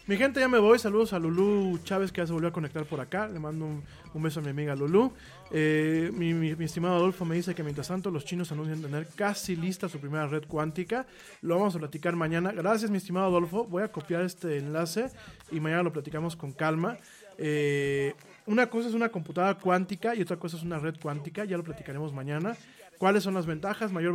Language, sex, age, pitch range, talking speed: Spanish, male, 30-49, 150-185 Hz, 225 wpm